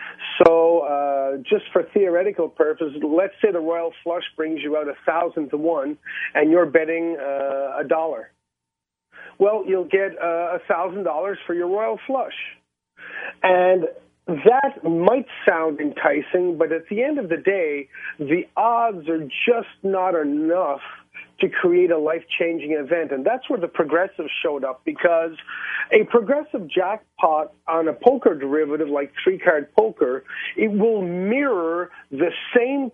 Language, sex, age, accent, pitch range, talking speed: English, male, 40-59, American, 160-225 Hz, 145 wpm